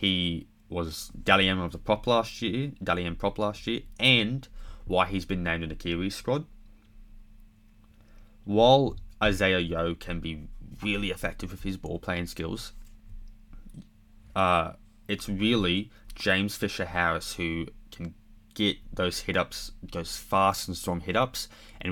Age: 20-39